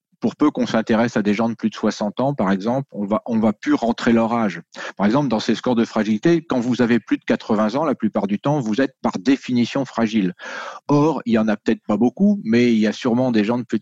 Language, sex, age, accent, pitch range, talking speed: French, male, 40-59, French, 105-125 Hz, 270 wpm